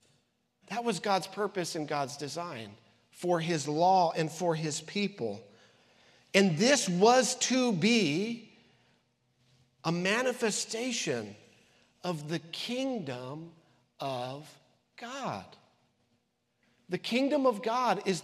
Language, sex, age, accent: English, male, 50-69, American